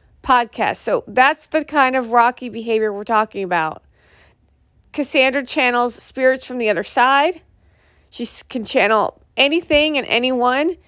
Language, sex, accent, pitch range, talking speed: English, female, American, 195-260 Hz, 130 wpm